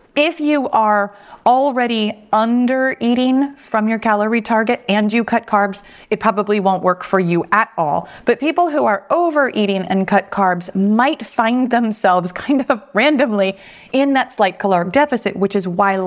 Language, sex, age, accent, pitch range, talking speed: English, female, 30-49, American, 185-240 Hz, 165 wpm